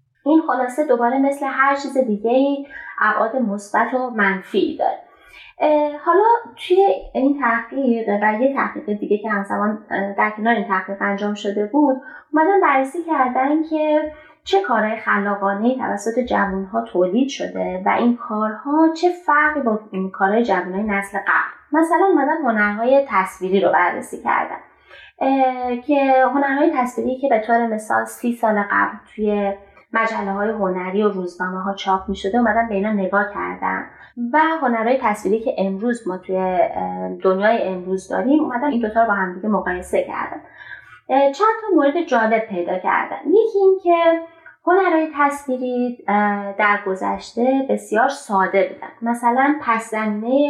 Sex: female